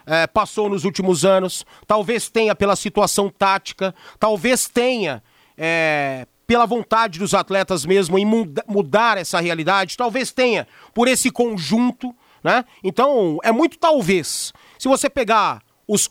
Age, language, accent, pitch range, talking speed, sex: 40-59, Portuguese, Brazilian, 200-245 Hz, 140 wpm, male